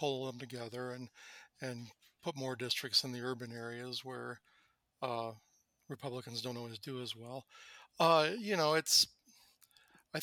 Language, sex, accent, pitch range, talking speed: English, male, American, 125-145 Hz, 160 wpm